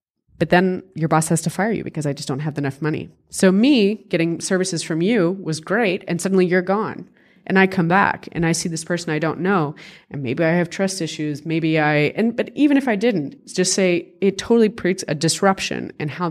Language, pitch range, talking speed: French, 155-190 Hz, 230 wpm